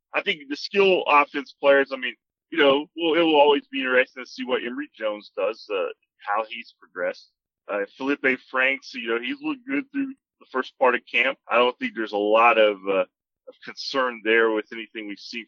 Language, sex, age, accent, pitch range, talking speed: English, male, 30-49, American, 110-160 Hz, 215 wpm